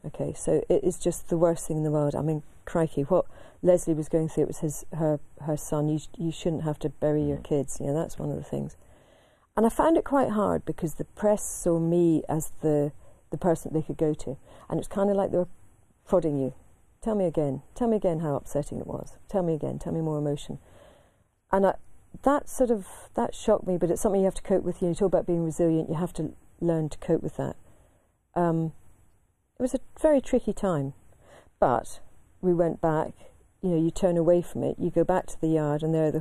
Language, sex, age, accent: English, female, 40-59, British